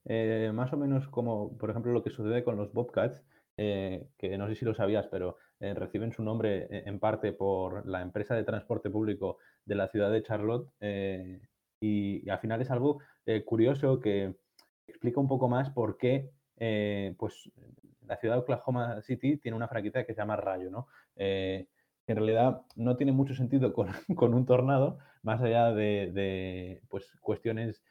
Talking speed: 185 wpm